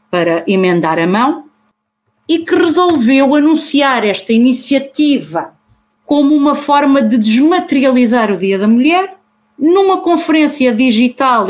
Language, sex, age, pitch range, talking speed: Portuguese, female, 30-49, 210-275 Hz, 115 wpm